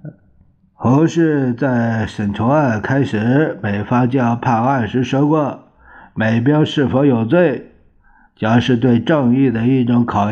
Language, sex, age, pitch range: Chinese, male, 50-69, 100-135 Hz